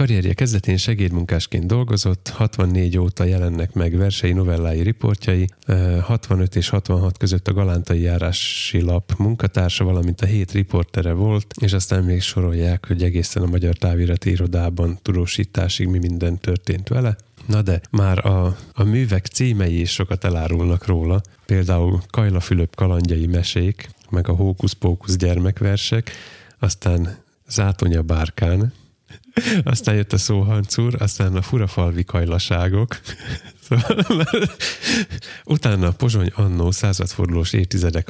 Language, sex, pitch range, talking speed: Hungarian, male, 90-110 Hz, 120 wpm